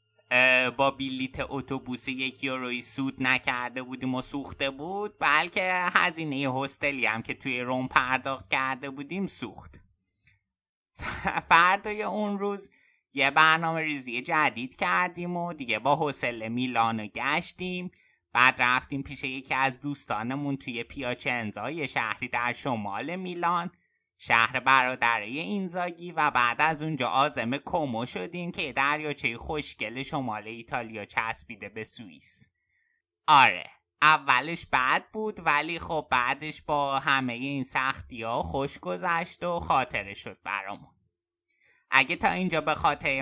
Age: 30-49